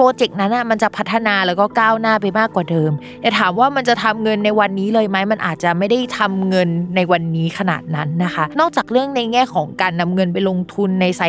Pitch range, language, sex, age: 180-235 Hz, Thai, female, 20-39